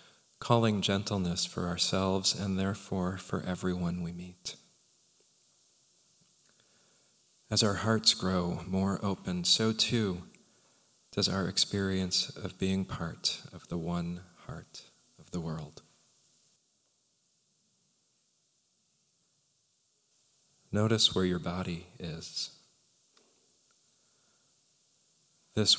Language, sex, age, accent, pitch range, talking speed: English, male, 40-59, American, 95-110 Hz, 85 wpm